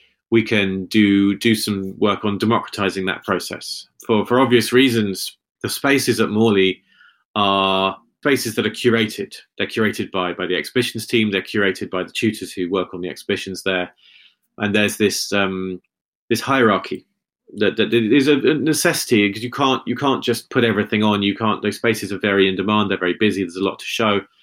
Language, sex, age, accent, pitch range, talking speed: English, male, 30-49, British, 95-115 Hz, 190 wpm